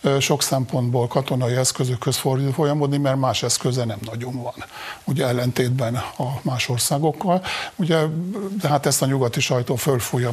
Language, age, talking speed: Hungarian, 50-69, 135 wpm